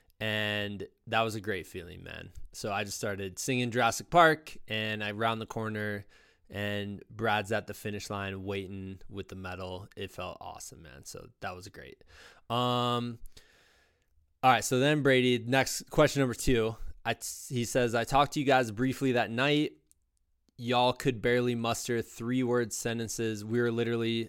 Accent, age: American, 20-39